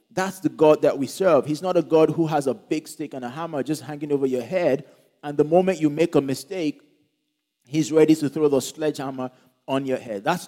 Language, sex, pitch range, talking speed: English, male, 130-175 Hz, 230 wpm